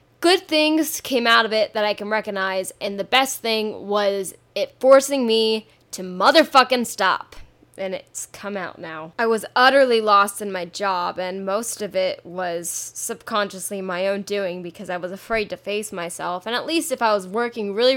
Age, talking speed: 10-29, 190 wpm